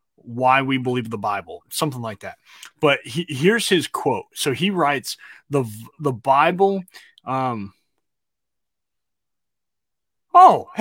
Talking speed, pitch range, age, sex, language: 110 wpm, 125-175 Hz, 20-39, male, English